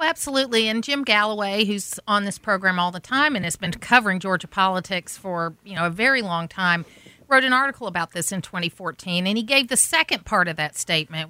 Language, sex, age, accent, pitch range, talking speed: English, female, 40-59, American, 180-235 Hz, 220 wpm